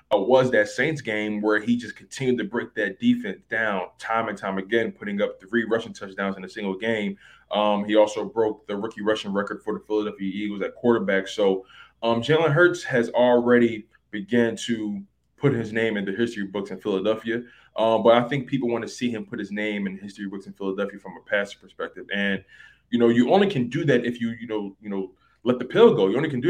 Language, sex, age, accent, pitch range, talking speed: English, male, 20-39, American, 105-135 Hz, 225 wpm